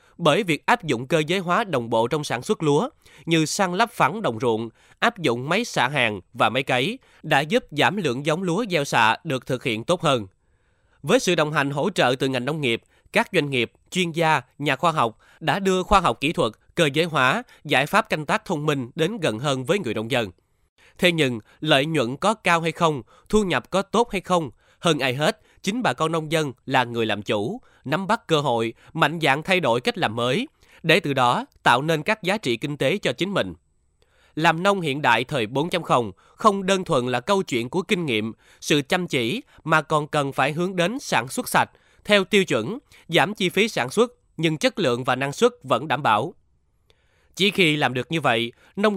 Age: 20-39